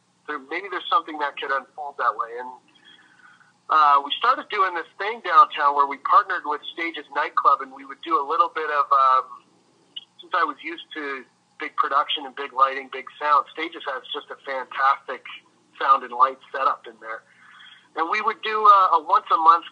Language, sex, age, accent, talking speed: English, male, 40-59, American, 190 wpm